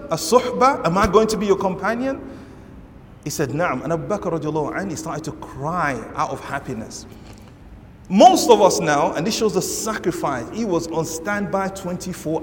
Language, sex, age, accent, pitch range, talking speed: English, male, 30-49, Nigerian, 155-235 Hz, 180 wpm